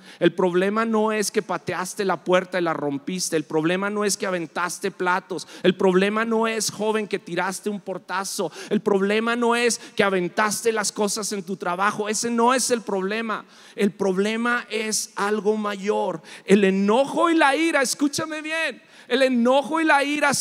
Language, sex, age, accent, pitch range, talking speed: English, male, 40-59, Mexican, 185-240 Hz, 175 wpm